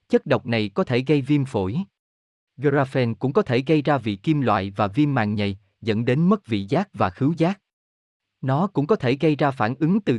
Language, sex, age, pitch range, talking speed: Vietnamese, male, 20-39, 110-150 Hz, 225 wpm